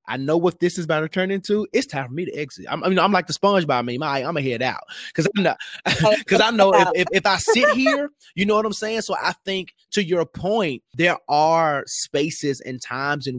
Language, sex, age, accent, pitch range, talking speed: English, male, 20-39, American, 135-185 Hz, 255 wpm